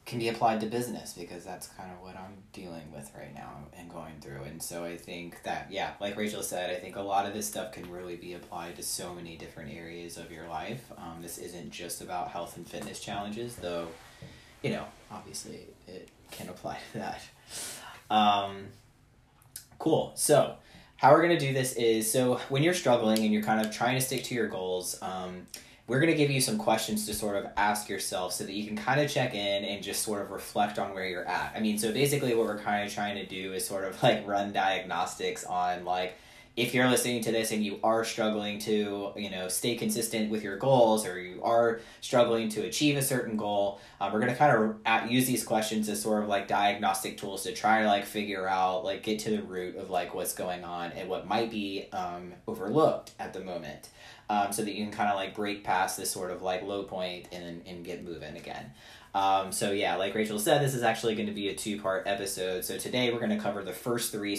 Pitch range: 90-115 Hz